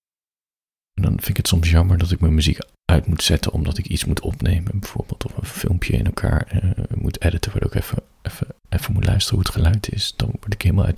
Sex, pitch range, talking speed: male, 85-105 Hz, 245 wpm